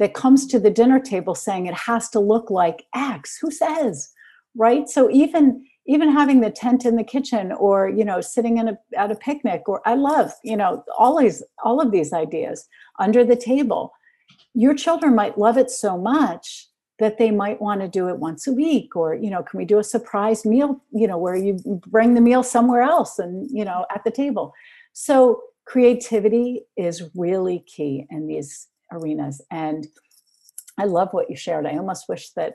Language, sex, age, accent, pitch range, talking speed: English, female, 60-79, American, 190-265 Hz, 195 wpm